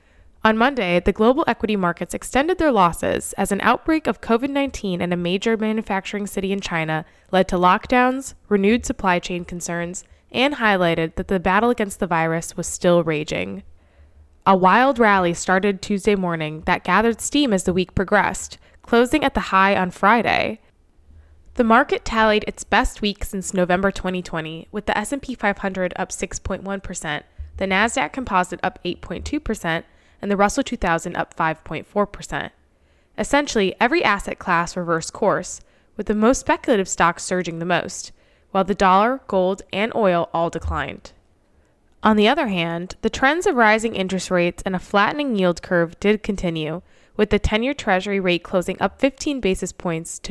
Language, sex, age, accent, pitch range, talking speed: English, female, 10-29, American, 170-215 Hz, 160 wpm